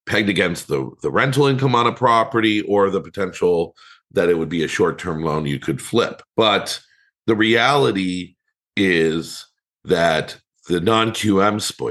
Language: English